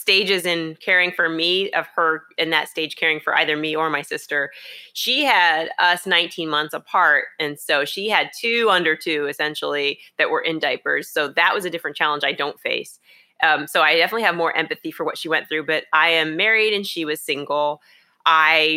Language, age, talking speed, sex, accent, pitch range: English, 30-49, 210 wpm, female, American, 155-195 Hz